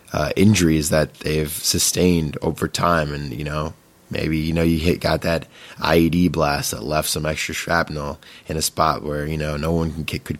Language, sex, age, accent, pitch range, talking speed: English, male, 20-39, American, 75-90 Hz, 190 wpm